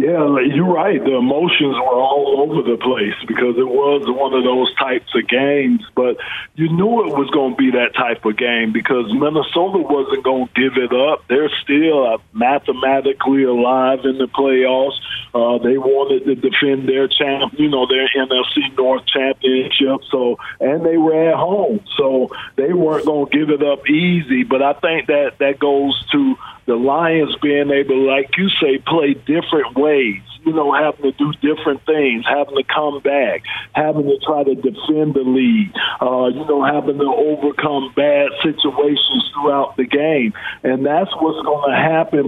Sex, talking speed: male, 180 wpm